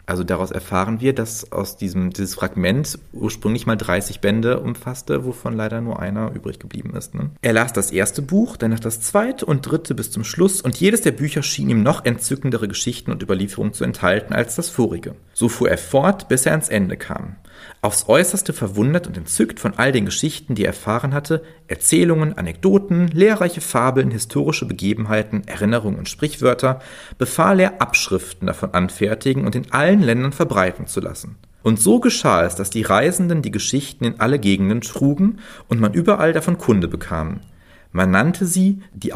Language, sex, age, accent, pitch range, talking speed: German, male, 40-59, German, 100-160 Hz, 175 wpm